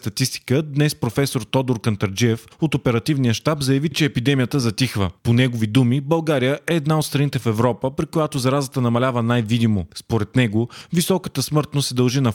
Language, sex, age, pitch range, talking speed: Bulgarian, male, 20-39, 120-145 Hz, 160 wpm